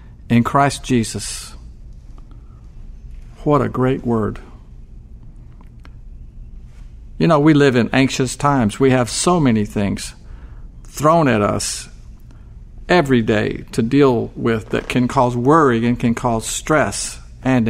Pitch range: 110-160 Hz